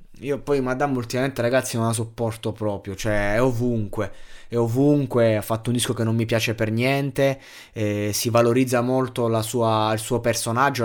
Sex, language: male, Italian